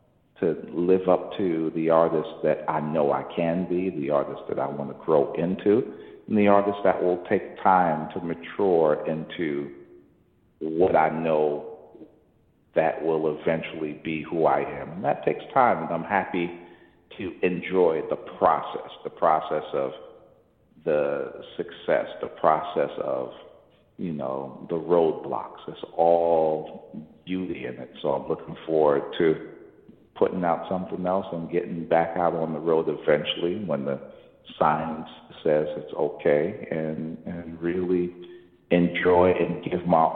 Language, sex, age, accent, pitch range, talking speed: English, male, 50-69, American, 75-90 Hz, 145 wpm